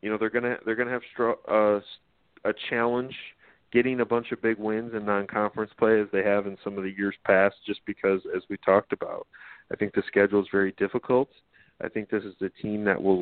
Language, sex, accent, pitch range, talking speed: English, male, American, 100-120 Hz, 225 wpm